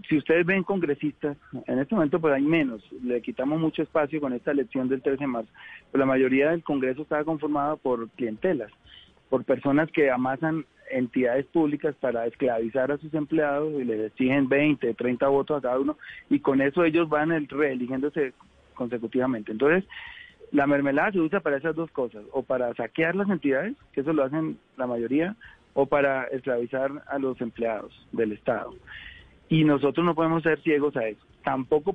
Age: 40-59